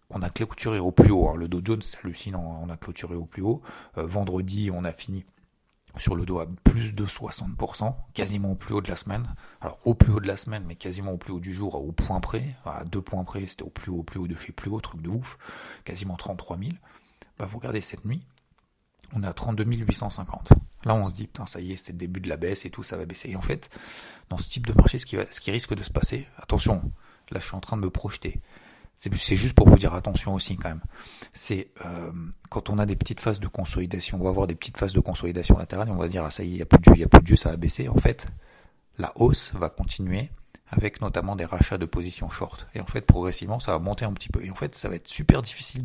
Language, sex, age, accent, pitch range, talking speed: French, male, 40-59, French, 90-105 Hz, 280 wpm